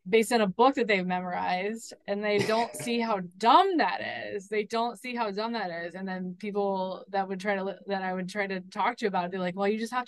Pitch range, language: 185-220 Hz, English